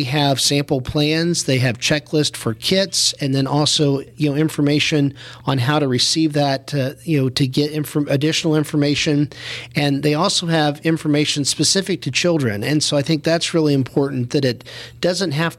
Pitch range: 135-155 Hz